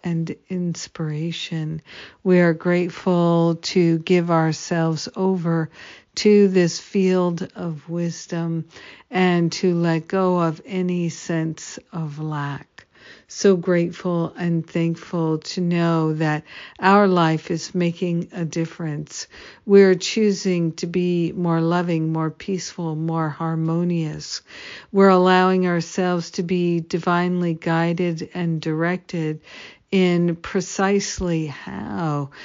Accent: American